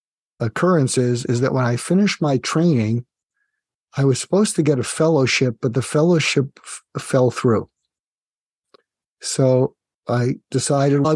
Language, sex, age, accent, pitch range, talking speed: English, male, 50-69, American, 120-155 Hz, 135 wpm